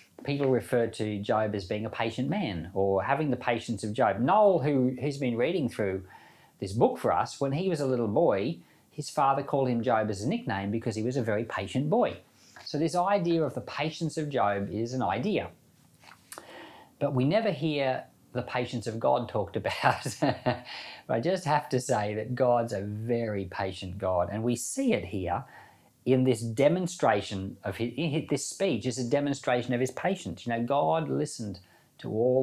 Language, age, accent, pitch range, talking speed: English, 40-59, Australian, 105-145 Hz, 190 wpm